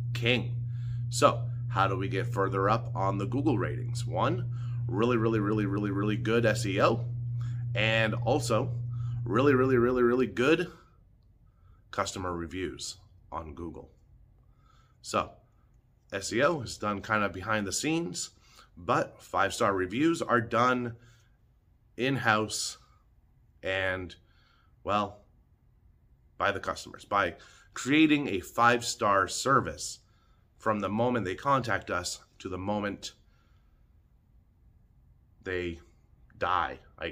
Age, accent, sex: 30-49, American, male